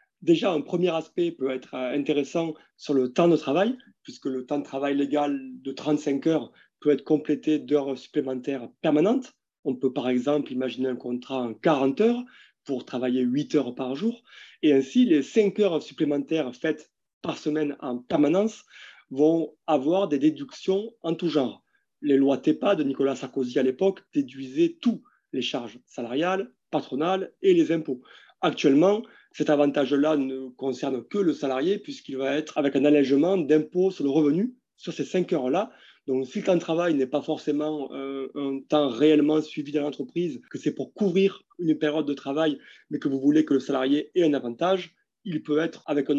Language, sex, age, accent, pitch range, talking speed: French, male, 30-49, French, 135-180 Hz, 180 wpm